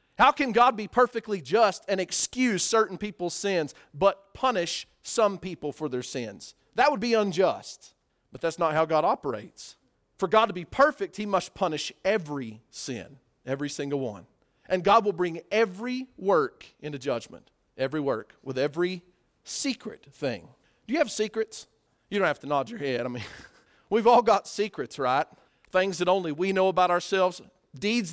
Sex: male